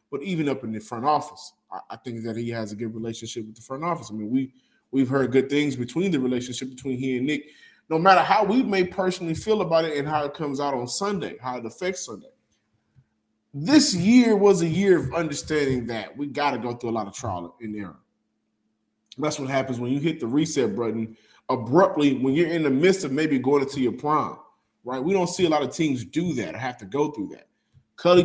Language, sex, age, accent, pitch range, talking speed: English, male, 20-39, American, 115-150 Hz, 235 wpm